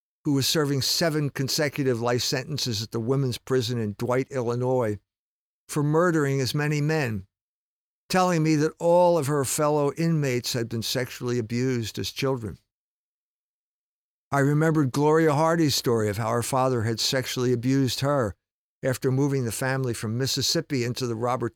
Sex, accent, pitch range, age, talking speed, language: male, American, 115-150 Hz, 50-69, 155 wpm, English